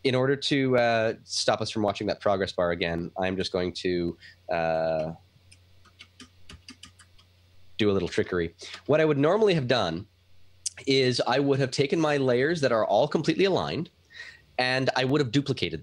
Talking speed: 165 wpm